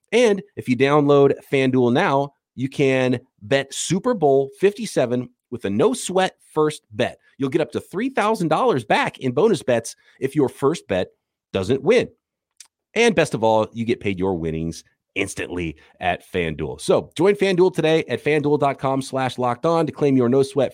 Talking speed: 170 wpm